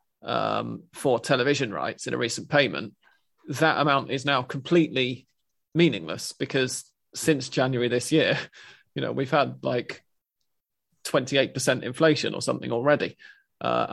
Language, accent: English, British